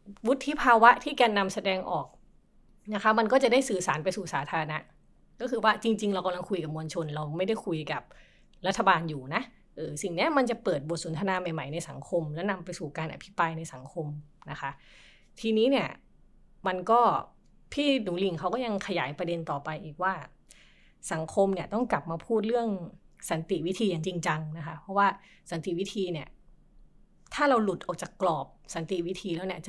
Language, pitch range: Thai, 165-215 Hz